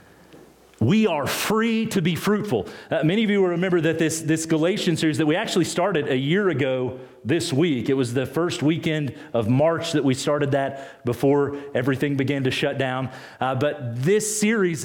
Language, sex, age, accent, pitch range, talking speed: English, male, 40-59, American, 120-175 Hz, 190 wpm